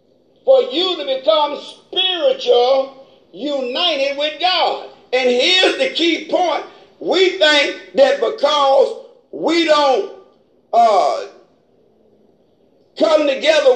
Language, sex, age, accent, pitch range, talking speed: English, male, 50-69, American, 275-400 Hz, 95 wpm